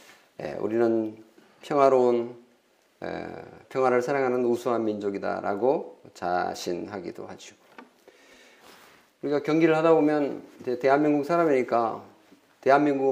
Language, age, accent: Korean, 40-59, native